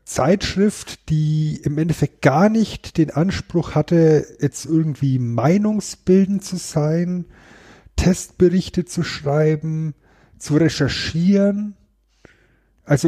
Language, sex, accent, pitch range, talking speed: German, male, German, 130-165 Hz, 90 wpm